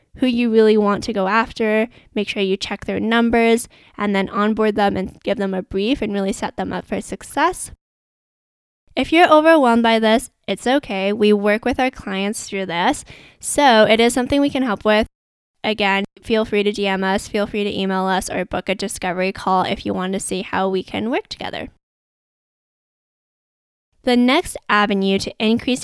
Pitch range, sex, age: 195-235 Hz, female, 10-29